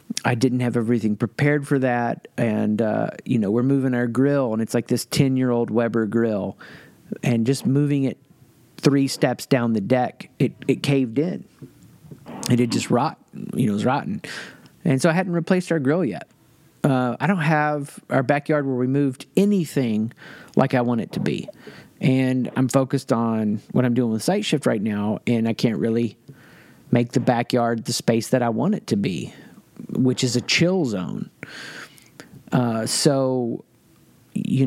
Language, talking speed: English, 180 wpm